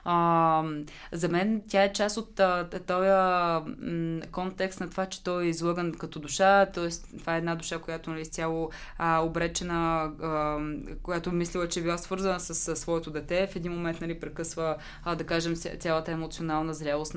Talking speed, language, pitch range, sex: 175 wpm, Bulgarian, 160-190 Hz, female